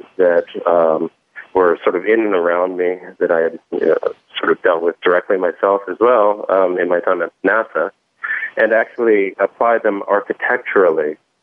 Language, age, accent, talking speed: English, 30-49, American, 165 wpm